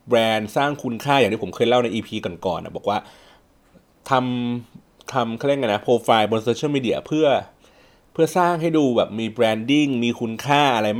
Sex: male